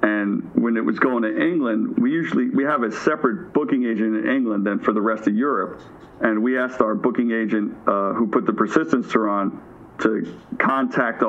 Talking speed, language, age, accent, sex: 205 wpm, English, 50-69, American, male